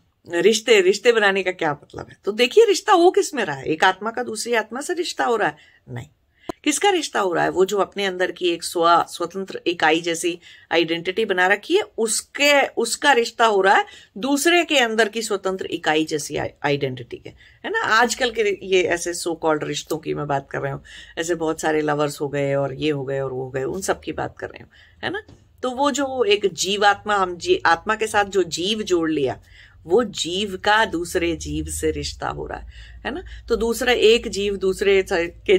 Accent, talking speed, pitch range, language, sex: Indian, 125 wpm, 155-230 Hz, English, female